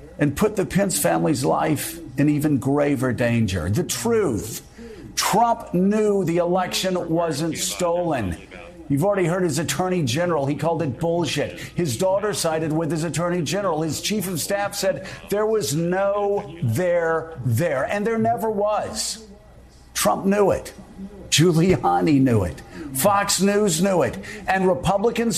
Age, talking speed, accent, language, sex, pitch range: 50-69, 145 wpm, American, English, male, 165-210 Hz